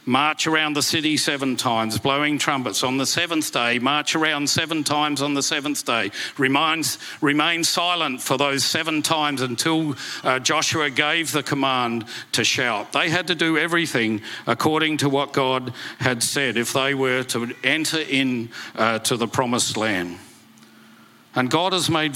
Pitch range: 125-155 Hz